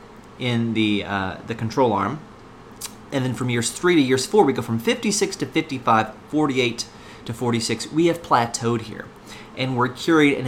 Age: 30-49